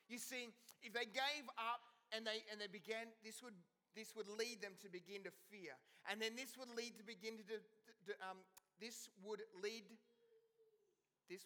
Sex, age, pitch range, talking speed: male, 30-49, 185-235 Hz, 190 wpm